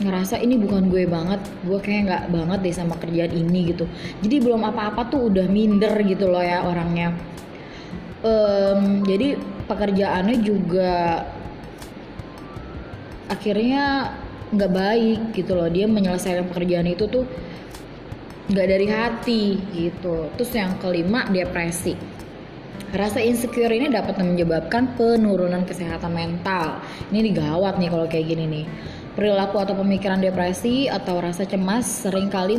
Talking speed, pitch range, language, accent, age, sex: 125 wpm, 180-215 Hz, English, Indonesian, 20-39, female